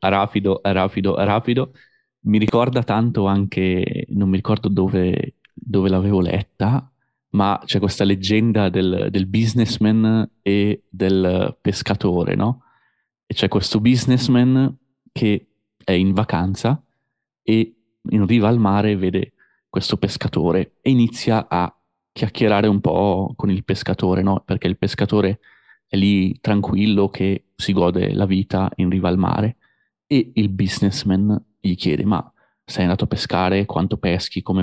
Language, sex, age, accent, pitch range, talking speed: Italian, male, 20-39, native, 95-120 Hz, 135 wpm